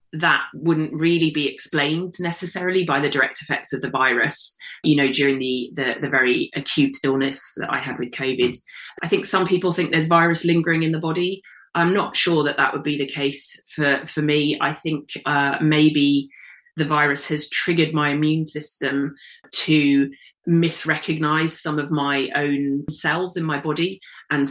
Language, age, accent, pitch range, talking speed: English, 30-49, British, 140-160 Hz, 175 wpm